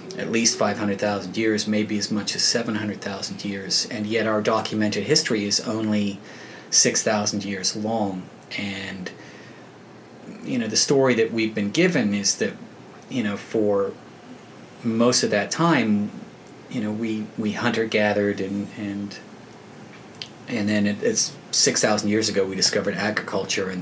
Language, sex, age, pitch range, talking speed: English, male, 30-49, 100-110 Hz, 155 wpm